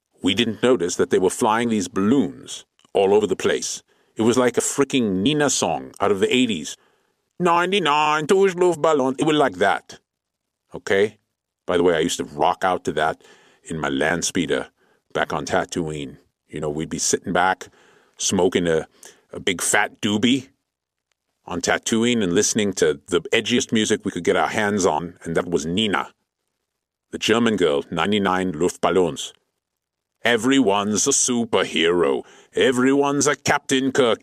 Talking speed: 155 wpm